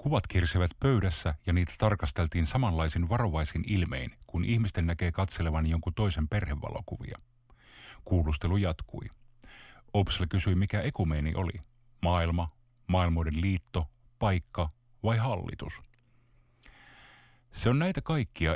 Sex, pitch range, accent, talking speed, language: male, 85-115 Hz, native, 105 wpm, Finnish